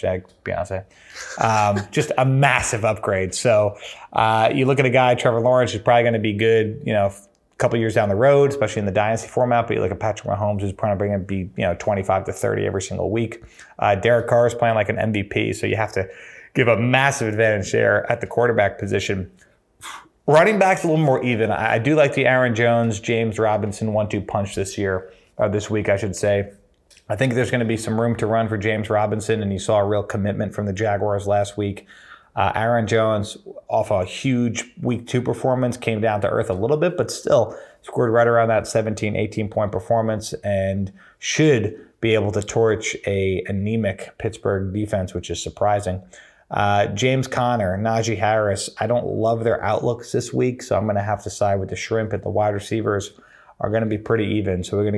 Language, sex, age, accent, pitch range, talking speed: English, male, 30-49, American, 100-115 Hz, 215 wpm